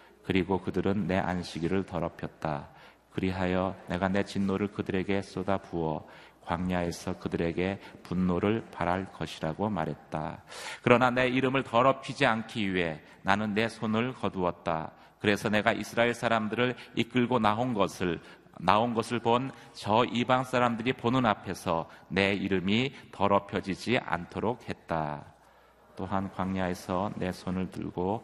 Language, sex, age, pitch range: Korean, male, 30-49, 90-115 Hz